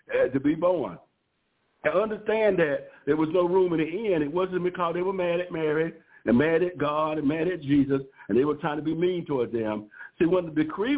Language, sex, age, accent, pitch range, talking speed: English, male, 60-79, American, 150-190 Hz, 235 wpm